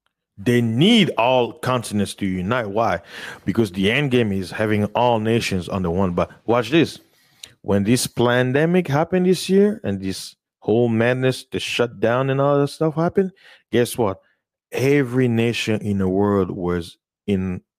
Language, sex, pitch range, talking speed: English, male, 95-125 Hz, 160 wpm